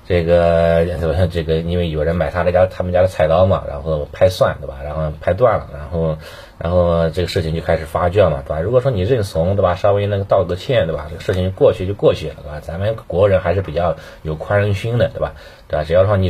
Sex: male